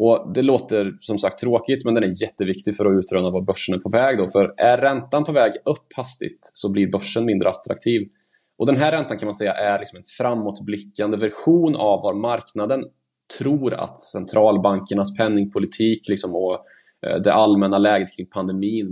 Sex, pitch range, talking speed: male, 100-115 Hz, 180 wpm